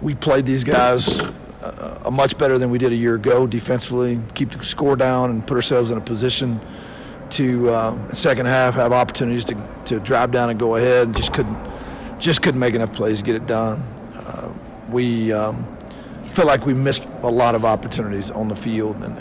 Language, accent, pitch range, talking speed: English, American, 115-135 Hz, 200 wpm